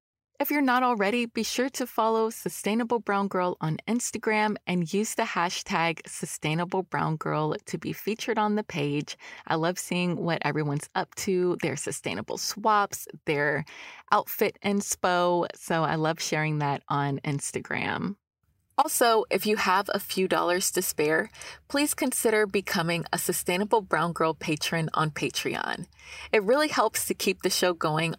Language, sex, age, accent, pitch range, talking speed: English, female, 20-39, American, 165-220 Hz, 155 wpm